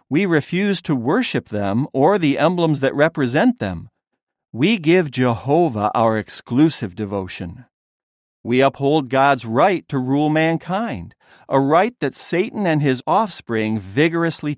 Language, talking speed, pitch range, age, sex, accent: English, 130 wpm, 115-160 Hz, 50-69, male, American